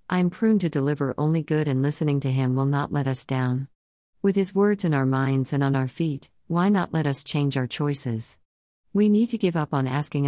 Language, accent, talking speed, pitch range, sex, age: English, American, 235 wpm, 130-160 Hz, female, 50-69